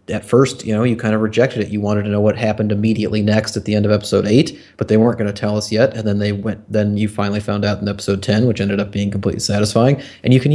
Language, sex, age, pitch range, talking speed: English, male, 30-49, 105-115 Hz, 295 wpm